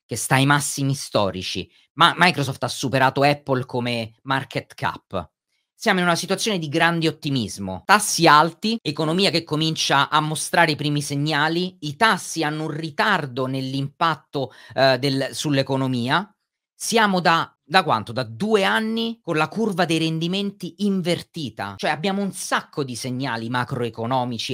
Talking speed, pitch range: 145 wpm, 130-180 Hz